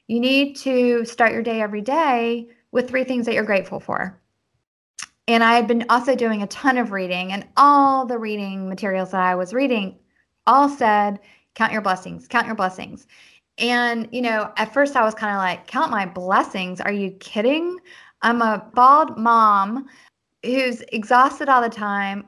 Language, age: English, 20-39